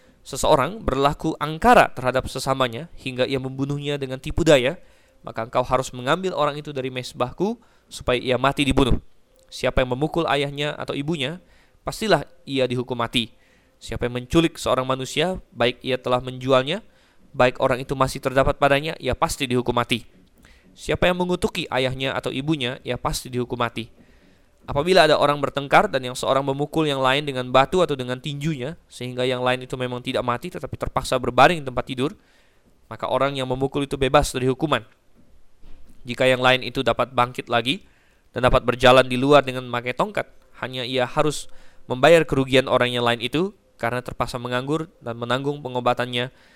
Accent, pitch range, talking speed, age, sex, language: native, 125-140 Hz, 165 wpm, 20-39, male, Indonesian